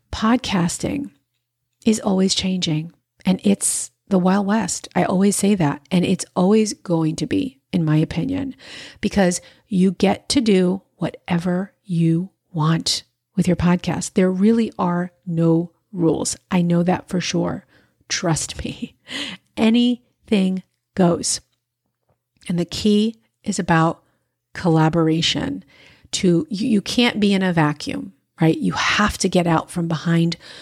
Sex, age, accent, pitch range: female, 40-59, American, 165-210 Hz